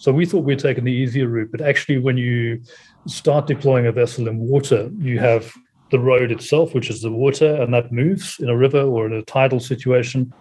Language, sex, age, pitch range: English, male, 30-49, 120-145 Hz